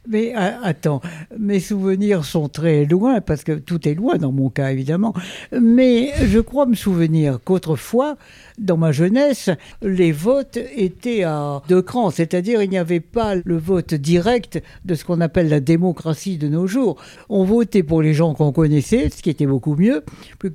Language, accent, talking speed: French, French, 180 wpm